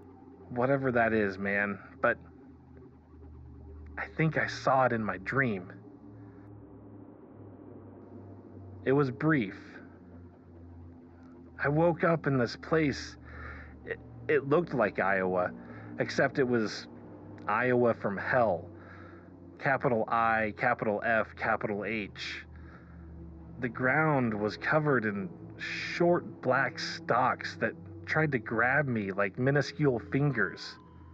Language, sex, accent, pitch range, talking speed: English, male, American, 85-135 Hz, 105 wpm